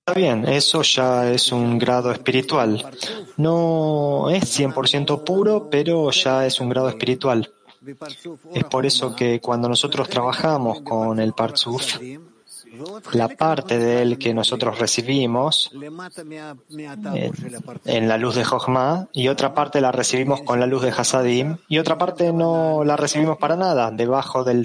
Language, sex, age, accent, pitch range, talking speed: English, male, 20-39, Argentinian, 120-145 Hz, 150 wpm